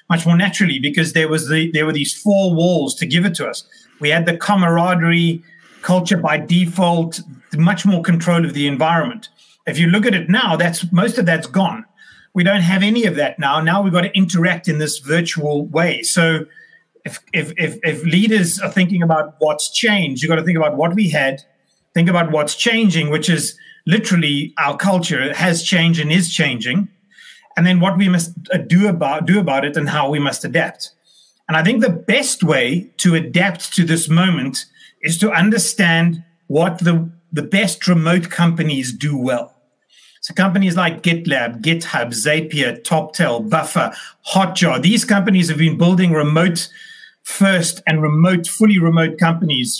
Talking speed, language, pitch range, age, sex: 180 wpm, English, 160-190 Hz, 30-49, male